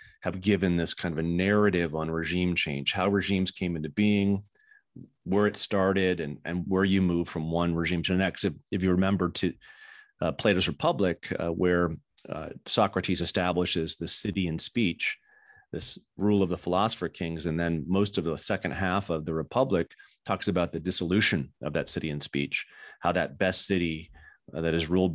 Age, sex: 30-49, male